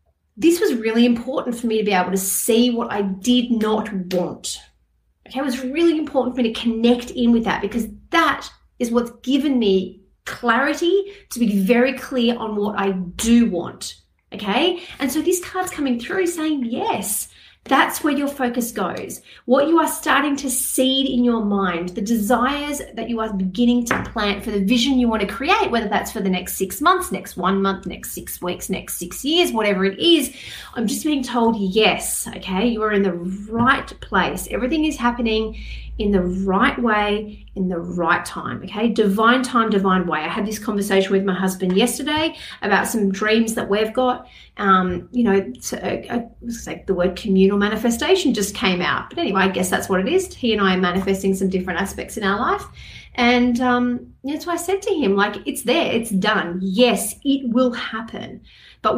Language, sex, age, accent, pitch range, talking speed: English, female, 30-49, Australian, 195-255 Hz, 195 wpm